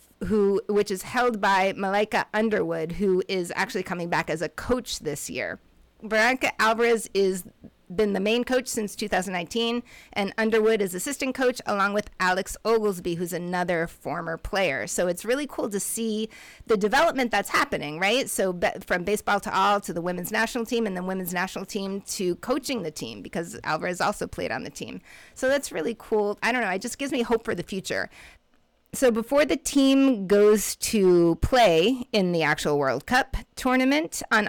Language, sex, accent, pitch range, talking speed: English, female, American, 195-250 Hz, 185 wpm